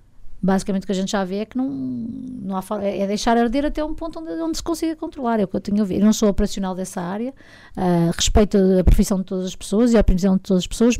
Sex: female